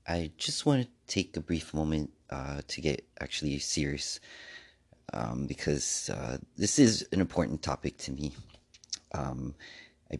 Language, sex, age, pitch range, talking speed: English, male, 30-49, 75-90 Hz, 145 wpm